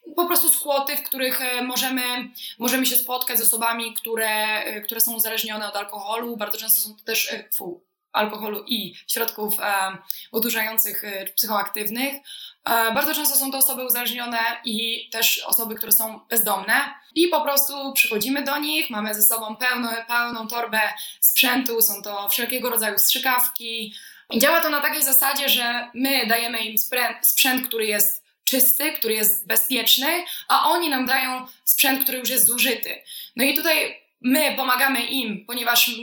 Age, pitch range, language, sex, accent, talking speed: 20-39, 225-265 Hz, Polish, female, native, 150 wpm